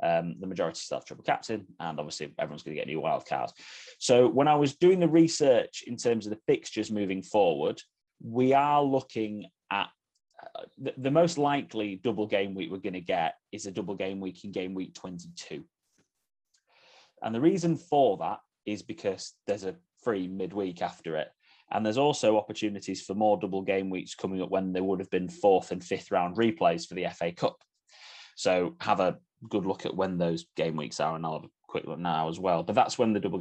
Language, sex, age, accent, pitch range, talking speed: English, male, 30-49, British, 95-140 Hz, 210 wpm